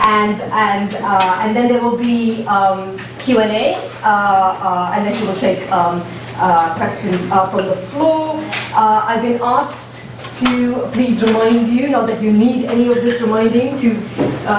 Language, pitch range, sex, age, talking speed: English, 200-240 Hz, female, 30-49, 170 wpm